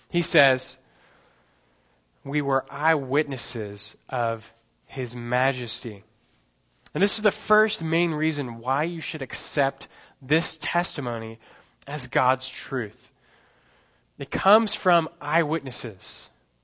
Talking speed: 100 wpm